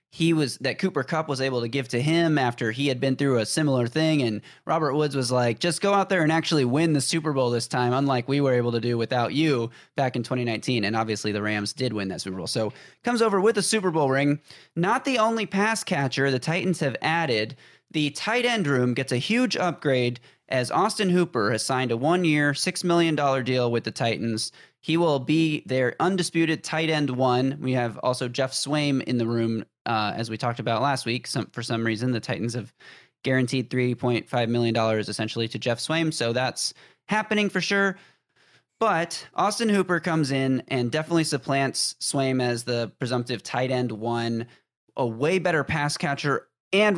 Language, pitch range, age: English, 120-160 Hz, 20-39